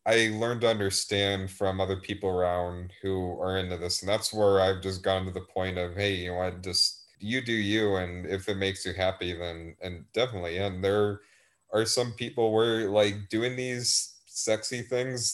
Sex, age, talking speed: male, 30-49, 195 wpm